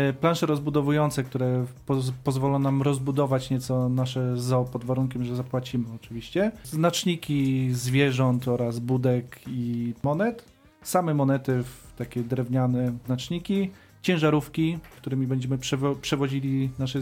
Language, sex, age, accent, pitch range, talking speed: Polish, male, 40-59, native, 130-155 Hz, 115 wpm